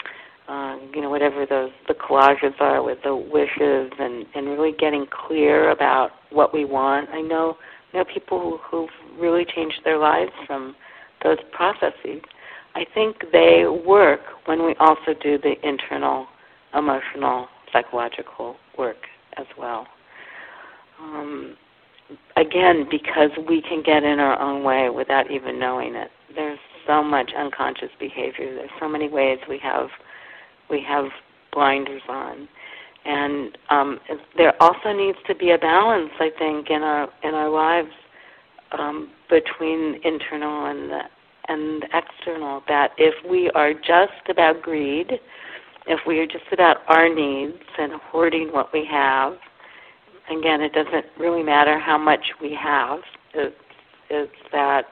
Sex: female